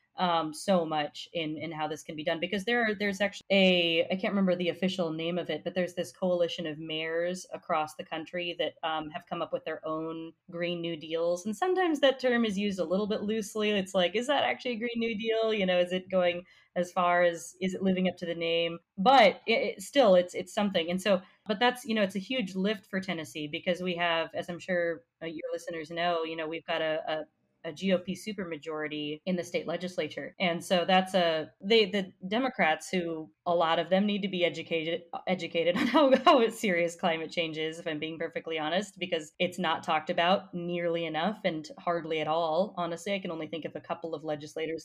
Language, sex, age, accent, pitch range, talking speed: English, female, 20-39, American, 160-190 Hz, 225 wpm